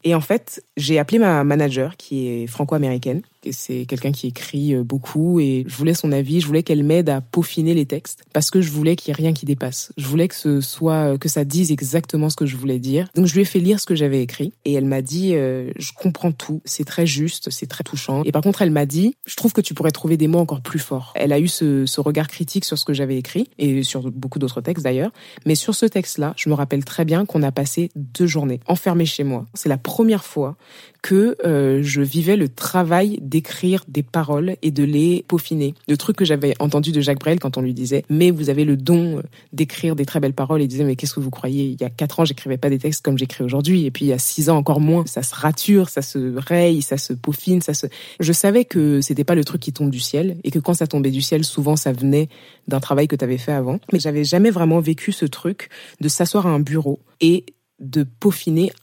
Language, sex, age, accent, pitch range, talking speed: French, female, 20-39, French, 140-170 Hz, 260 wpm